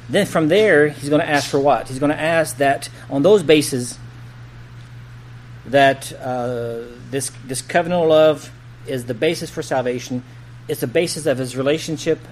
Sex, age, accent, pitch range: male, 40-59, American, 120-160 Hz